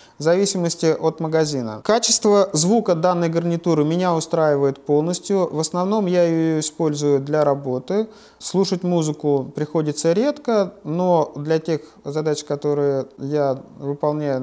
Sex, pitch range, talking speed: male, 145-190 Hz, 115 wpm